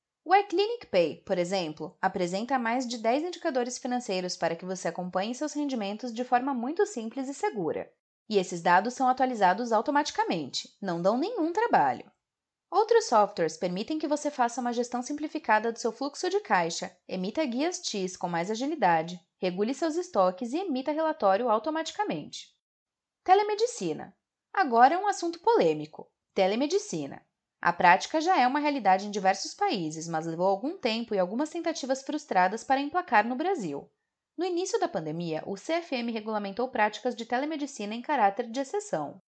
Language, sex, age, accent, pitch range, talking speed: Portuguese, female, 20-39, Brazilian, 205-320 Hz, 155 wpm